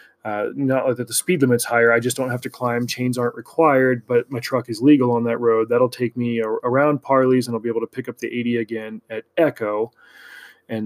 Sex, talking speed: male, 240 wpm